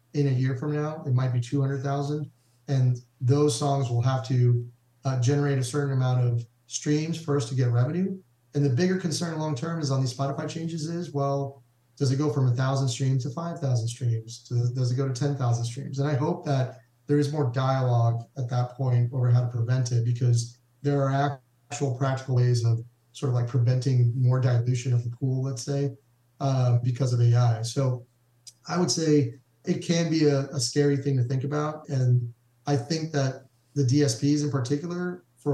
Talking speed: 195 wpm